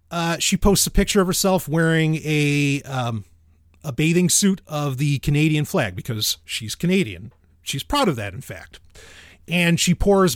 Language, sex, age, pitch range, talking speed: English, male, 30-49, 105-160 Hz, 170 wpm